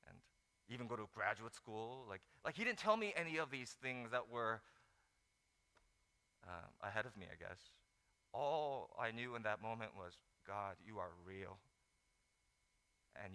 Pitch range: 90-130 Hz